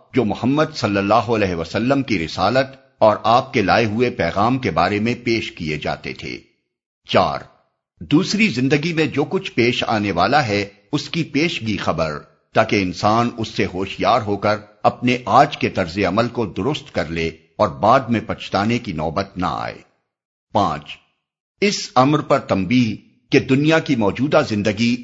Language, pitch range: English, 95-130 Hz